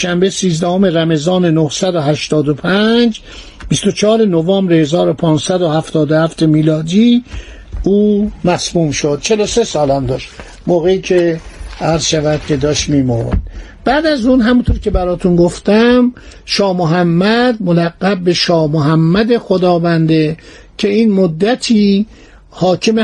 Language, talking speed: Persian, 110 wpm